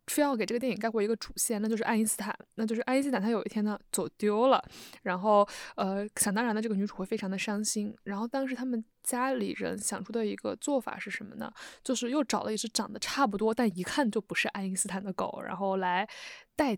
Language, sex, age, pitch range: Chinese, female, 10-29, 205-240 Hz